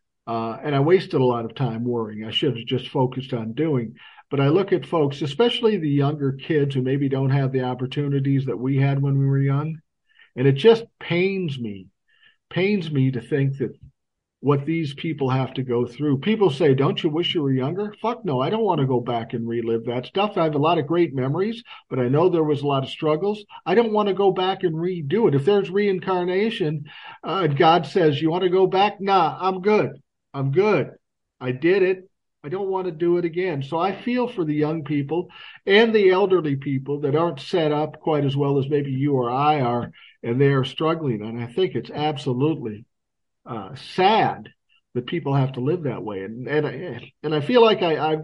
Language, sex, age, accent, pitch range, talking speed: English, male, 50-69, American, 130-175 Hz, 215 wpm